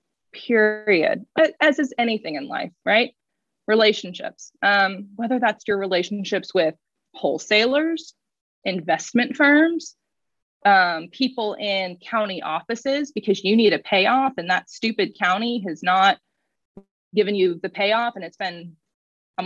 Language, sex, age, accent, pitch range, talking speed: English, female, 20-39, American, 185-235 Hz, 125 wpm